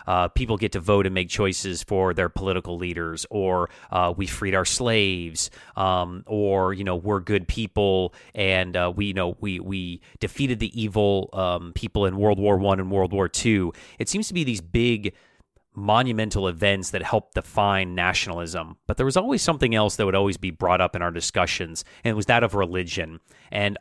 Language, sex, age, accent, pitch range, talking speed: English, male, 30-49, American, 90-110 Hz, 200 wpm